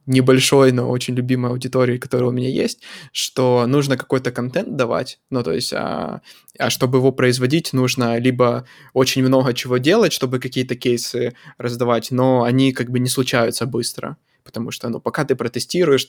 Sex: male